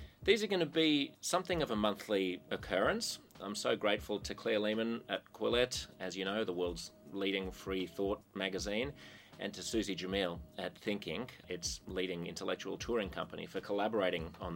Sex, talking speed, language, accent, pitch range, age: male, 170 wpm, English, Australian, 95-125 Hz, 30-49